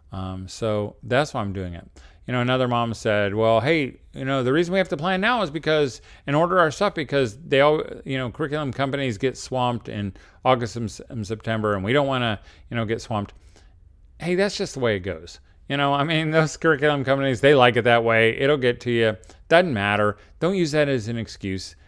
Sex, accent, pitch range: male, American, 100-150 Hz